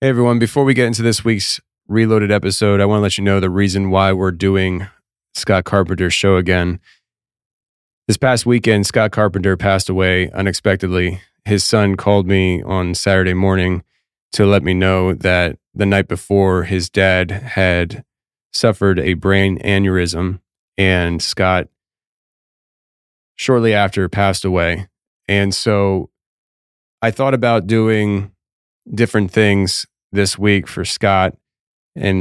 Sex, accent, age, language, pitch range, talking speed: male, American, 20-39, English, 95-105 Hz, 140 wpm